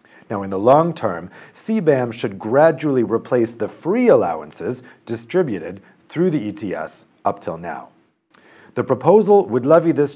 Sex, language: male, English